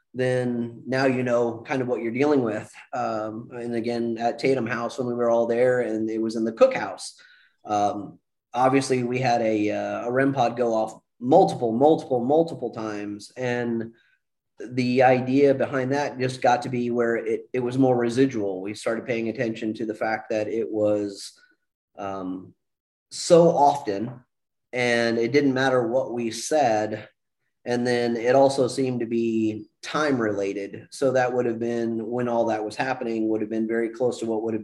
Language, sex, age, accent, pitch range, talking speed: English, male, 30-49, American, 110-130 Hz, 180 wpm